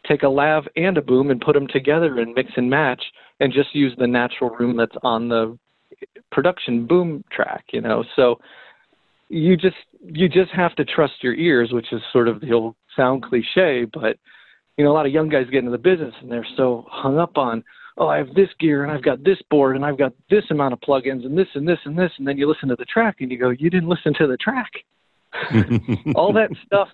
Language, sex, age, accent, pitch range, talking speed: English, male, 40-59, American, 125-175 Hz, 235 wpm